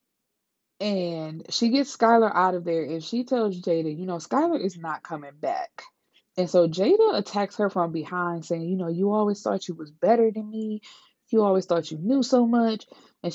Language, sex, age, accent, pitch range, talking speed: English, female, 20-39, American, 165-210 Hz, 200 wpm